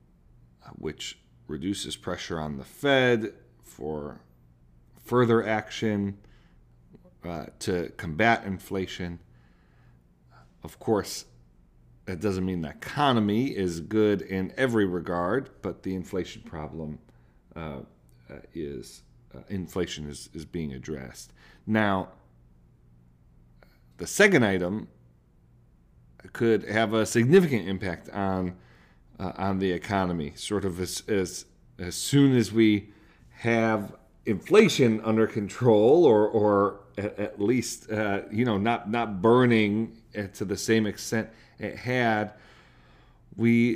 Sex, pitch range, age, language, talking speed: male, 70-110 Hz, 40-59, English, 110 wpm